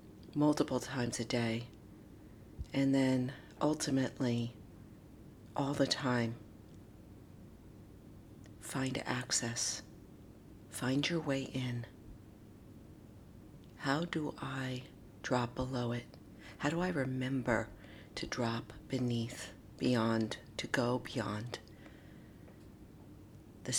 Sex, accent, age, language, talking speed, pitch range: female, American, 50-69, English, 85 wpm, 105-130 Hz